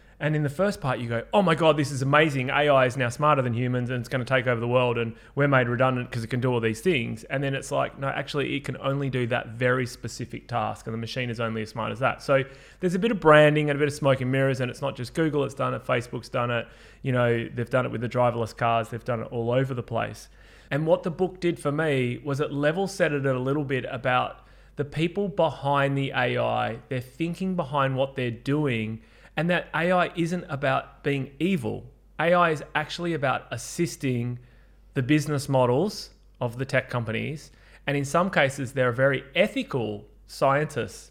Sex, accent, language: male, Australian, English